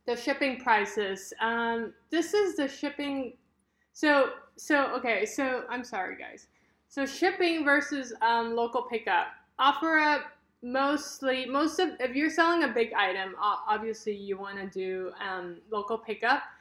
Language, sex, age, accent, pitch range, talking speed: English, female, 20-39, American, 210-270 Hz, 145 wpm